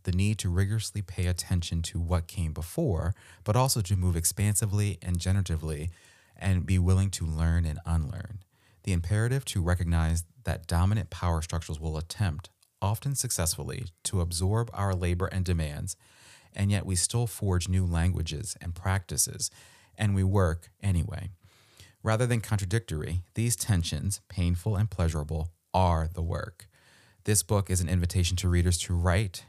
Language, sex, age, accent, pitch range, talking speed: English, male, 30-49, American, 85-105 Hz, 155 wpm